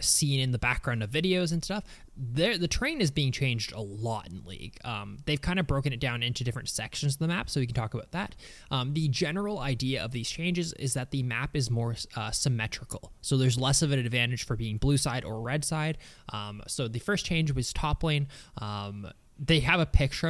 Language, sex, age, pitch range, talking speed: English, male, 20-39, 115-150 Hz, 230 wpm